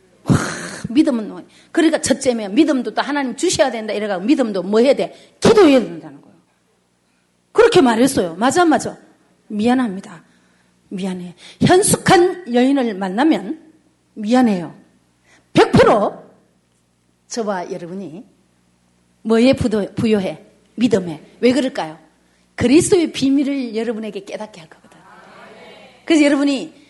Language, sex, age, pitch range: Korean, female, 40-59, 195-310 Hz